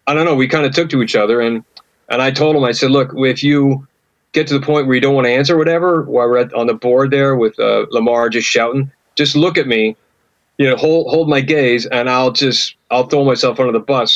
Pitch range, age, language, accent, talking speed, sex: 125-155 Hz, 40-59, English, American, 265 wpm, male